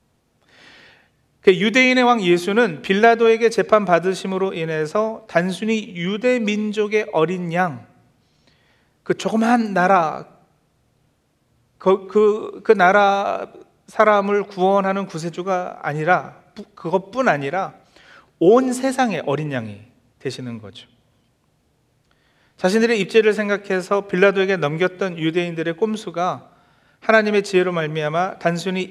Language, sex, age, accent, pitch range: Korean, male, 40-59, native, 155-205 Hz